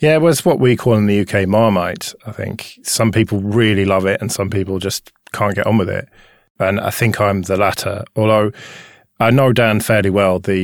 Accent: British